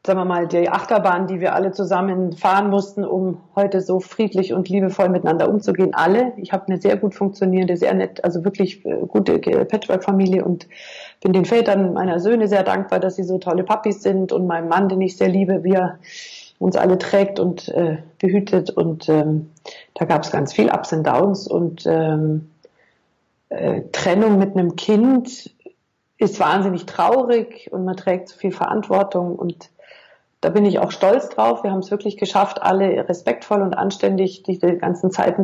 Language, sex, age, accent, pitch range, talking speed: German, female, 50-69, German, 175-200 Hz, 180 wpm